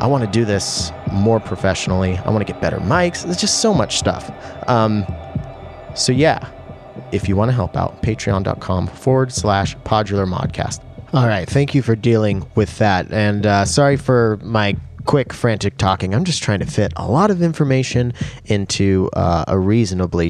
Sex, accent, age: male, American, 30-49